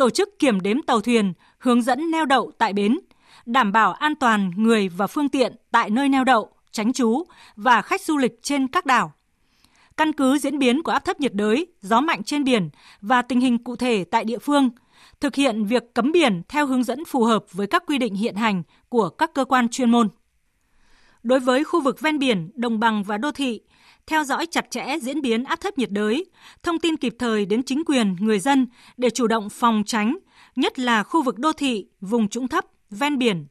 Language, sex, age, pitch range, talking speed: Vietnamese, female, 20-39, 225-290 Hz, 220 wpm